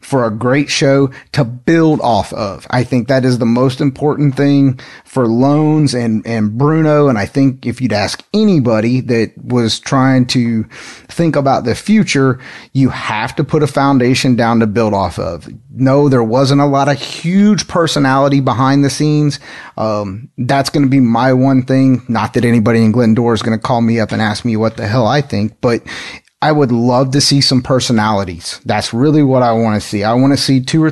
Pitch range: 120-150 Hz